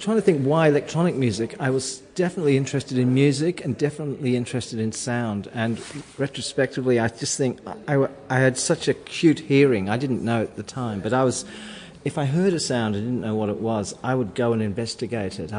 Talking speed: 210 wpm